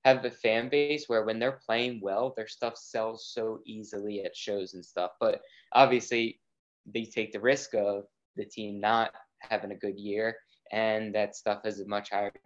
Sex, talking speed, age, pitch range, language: male, 190 wpm, 20-39, 105-135 Hz, English